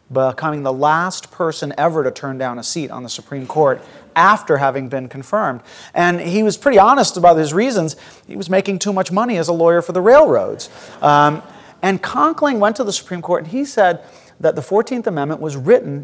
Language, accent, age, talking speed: English, American, 40-59, 205 wpm